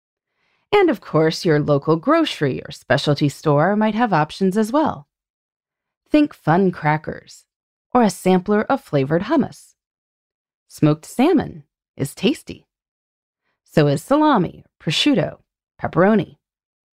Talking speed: 115 wpm